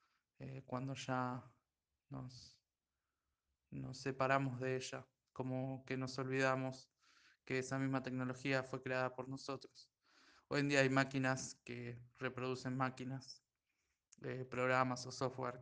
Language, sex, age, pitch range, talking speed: Spanish, male, 20-39, 125-135 Hz, 125 wpm